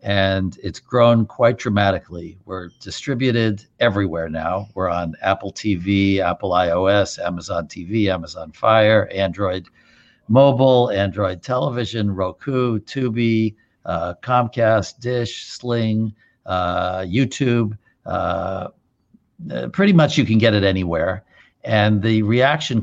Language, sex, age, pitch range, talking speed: English, male, 60-79, 95-115 Hz, 110 wpm